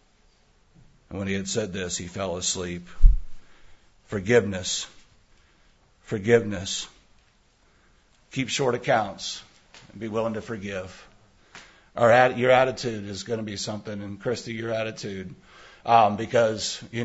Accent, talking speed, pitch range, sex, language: American, 115 wpm, 105-120 Hz, male, English